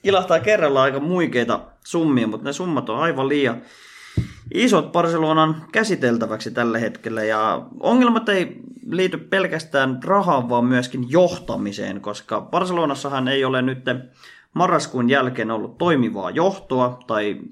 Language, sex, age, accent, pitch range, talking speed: Finnish, male, 20-39, native, 115-150 Hz, 125 wpm